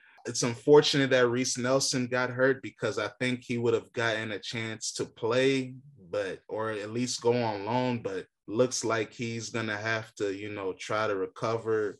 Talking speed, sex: 185 wpm, male